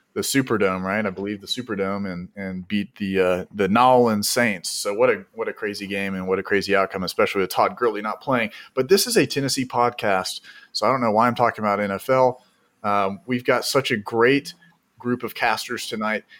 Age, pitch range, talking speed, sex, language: 30-49, 100-130 Hz, 210 wpm, male, English